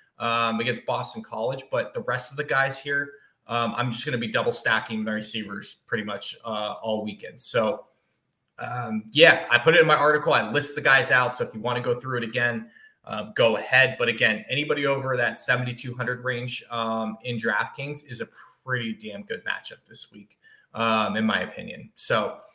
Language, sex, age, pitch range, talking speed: English, male, 20-39, 115-140 Hz, 200 wpm